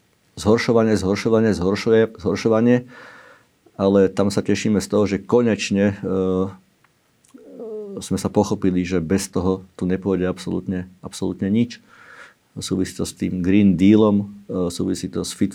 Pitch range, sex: 95-105 Hz, male